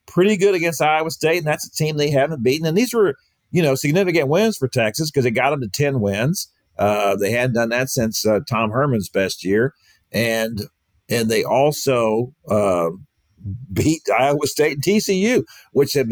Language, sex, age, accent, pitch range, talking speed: English, male, 50-69, American, 110-150 Hz, 190 wpm